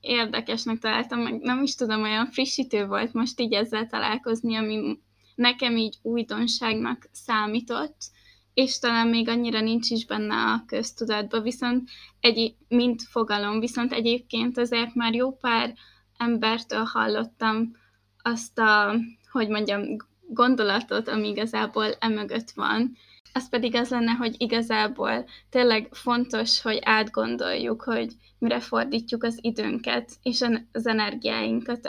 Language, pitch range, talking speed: Hungarian, 215-240 Hz, 125 wpm